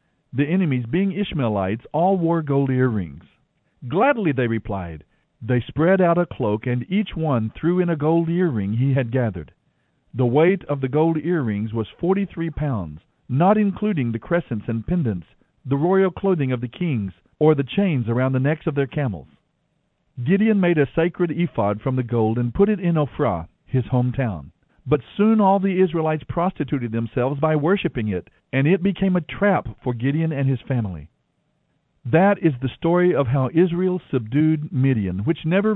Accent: American